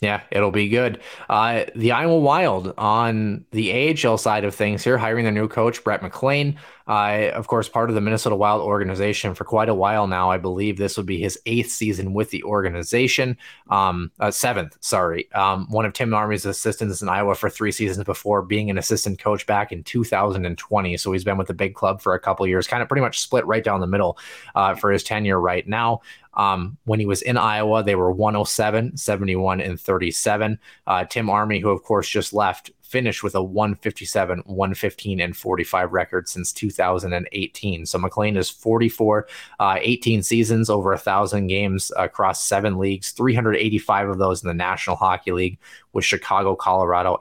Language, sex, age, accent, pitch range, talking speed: English, male, 20-39, American, 95-110 Hz, 190 wpm